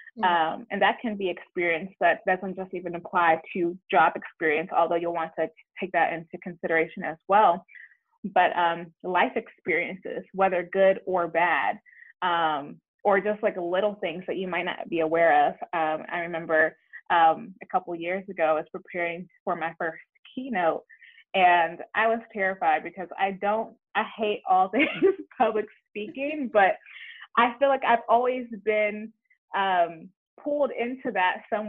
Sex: female